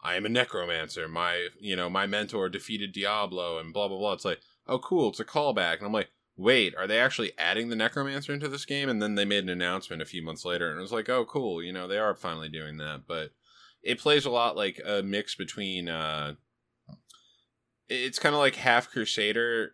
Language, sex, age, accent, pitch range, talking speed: English, male, 20-39, American, 90-115 Hz, 225 wpm